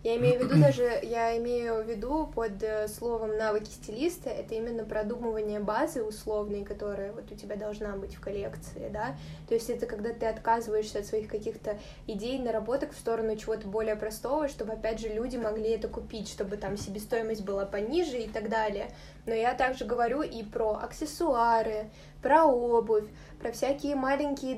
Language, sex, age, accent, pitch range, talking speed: Russian, female, 20-39, native, 220-250 Hz, 170 wpm